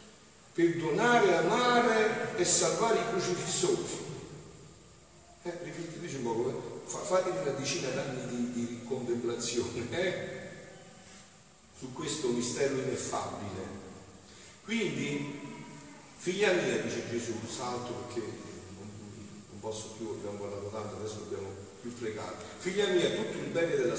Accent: native